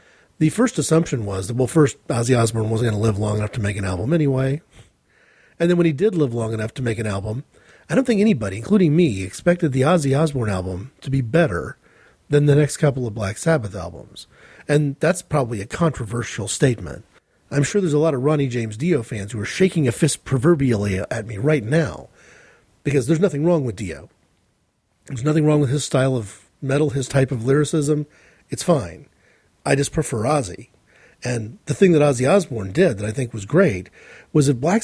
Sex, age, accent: male, 40-59, American